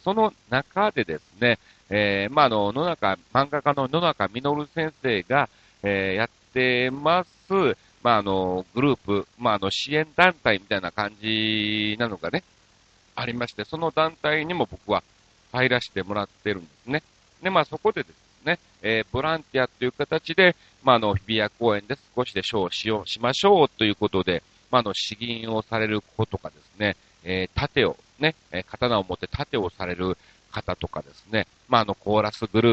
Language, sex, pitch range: Japanese, male, 100-140 Hz